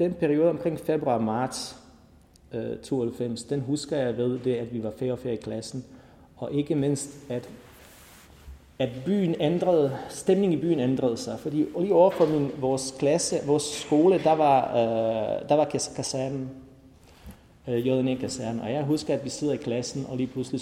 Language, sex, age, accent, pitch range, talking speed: Danish, male, 30-49, native, 115-155 Hz, 165 wpm